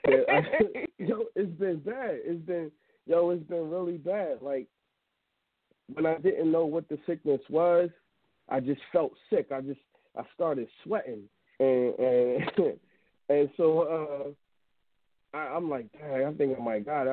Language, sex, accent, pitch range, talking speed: English, male, American, 135-175 Hz, 160 wpm